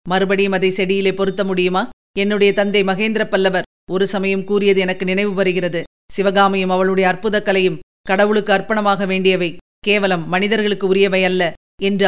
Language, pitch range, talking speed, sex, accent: Tamil, 185-245 Hz, 130 wpm, female, native